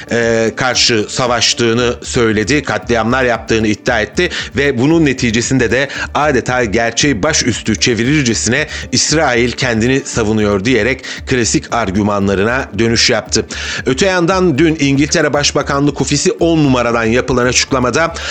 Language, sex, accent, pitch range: Turkish, male, native, 115-155 Hz